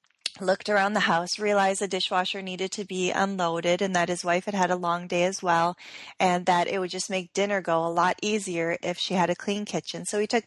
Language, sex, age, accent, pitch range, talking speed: English, female, 30-49, American, 180-210 Hz, 240 wpm